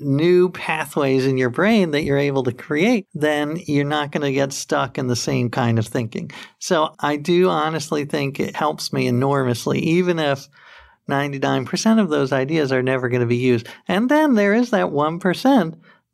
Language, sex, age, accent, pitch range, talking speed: English, male, 50-69, American, 140-185 Hz, 185 wpm